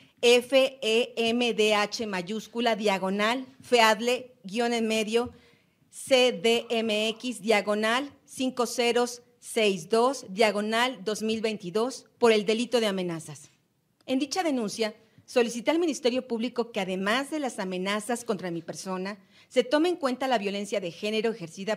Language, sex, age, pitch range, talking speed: Spanish, female, 40-59, 205-255 Hz, 115 wpm